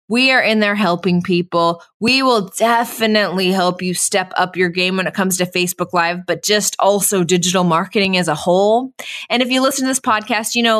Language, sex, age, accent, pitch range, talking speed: English, female, 20-39, American, 175-235 Hz, 210 wpm